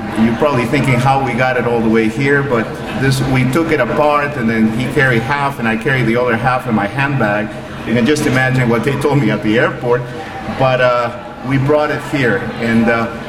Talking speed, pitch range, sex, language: 225 wpm, 110-135 Hz, male, English